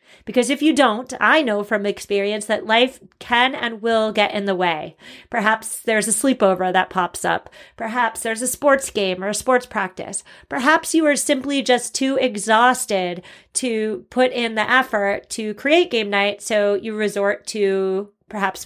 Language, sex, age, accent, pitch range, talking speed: English, female, 30-49, American, 200-270 Hz, 175 wpm